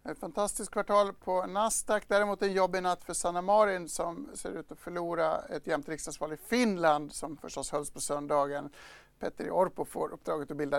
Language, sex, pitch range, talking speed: Swedish, male, 150-185 Hz, 185 wpm